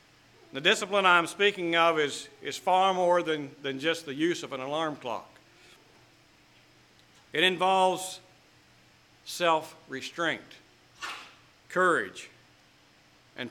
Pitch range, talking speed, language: 125-165 Hz, 100 wpm, English